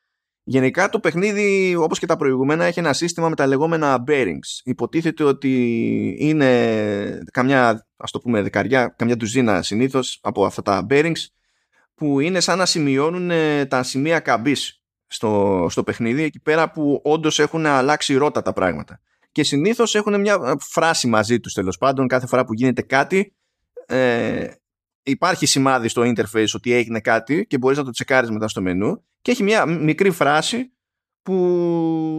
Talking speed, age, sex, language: 160 wpm, 20-39, male, Greek